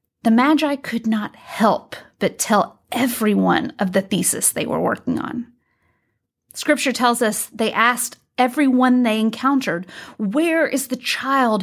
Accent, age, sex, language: American, 30-49, female, English